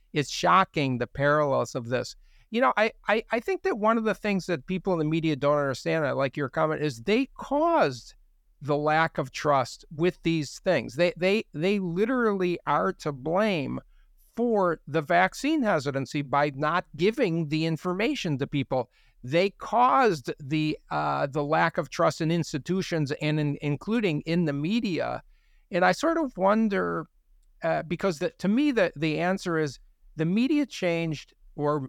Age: 50-69